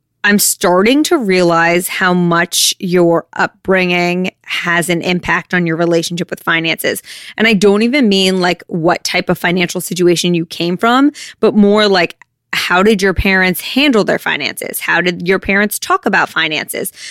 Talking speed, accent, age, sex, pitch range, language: 165 wpm, American, 20-39, female, 175-205 Hz, English